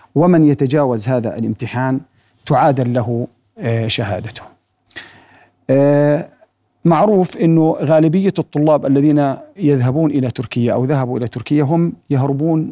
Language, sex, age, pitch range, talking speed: Arabic, male, 40-59, 125-150 Hz, 100 wpm